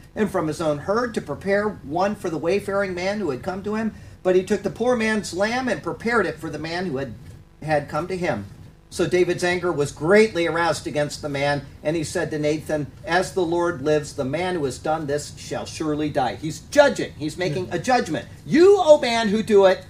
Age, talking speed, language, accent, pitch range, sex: 40-59, 225 wpm, English, American, 150-195 Hz, male